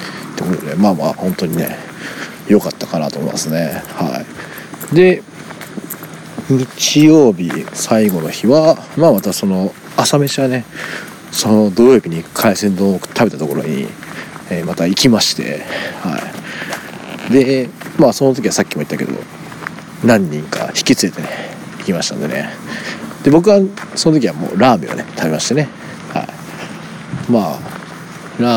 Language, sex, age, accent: Japanese, male, 40-59, native